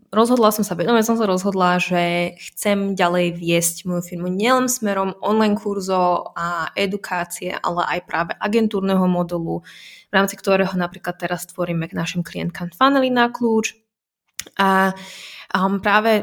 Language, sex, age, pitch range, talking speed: Slovak, female, 20-39, 180-210 Hz, 150 wpm